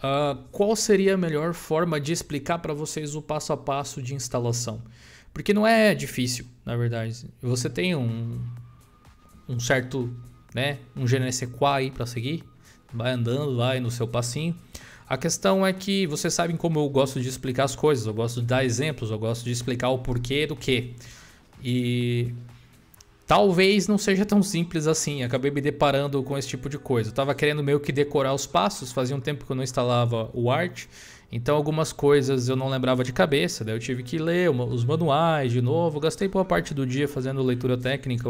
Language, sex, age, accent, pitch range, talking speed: Portuguese, male, 20-39, Brazilian, 125-155 Hz, 190 wpm